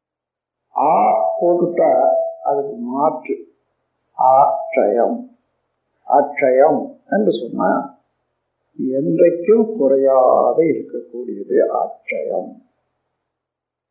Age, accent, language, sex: 50-69, native, Tamil, male